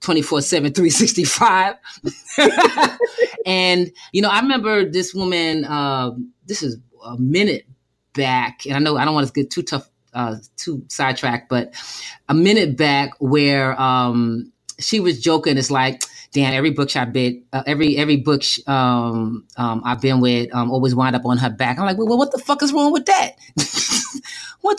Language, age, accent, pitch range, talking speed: English, 30-49, American, 135-205 Hz, 175 wpm